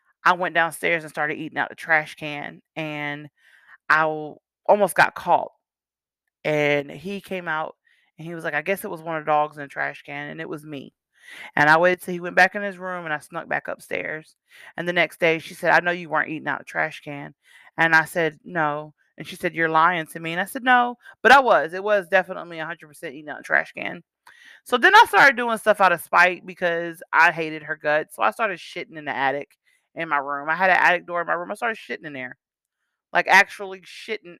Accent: American